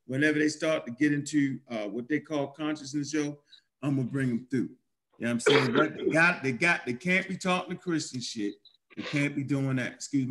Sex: male